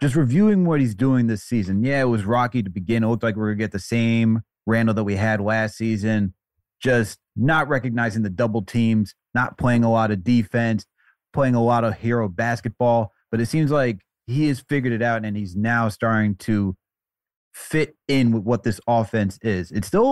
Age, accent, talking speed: 30-49, American, 210 wpm